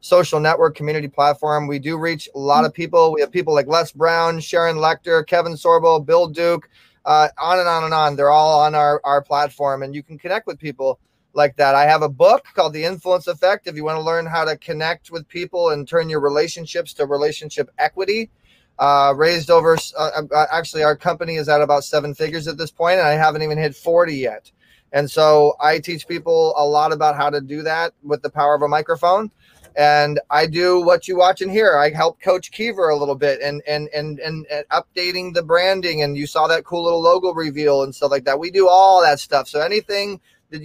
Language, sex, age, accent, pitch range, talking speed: English, male, 20-39, American, 150-175 Hz, 220 wpm